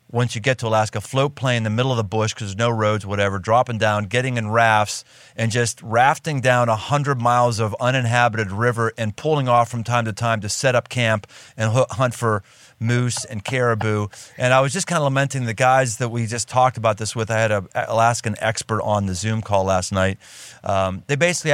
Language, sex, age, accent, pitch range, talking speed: English, male, 40-59, American, 110-135 Hz, 225 wpm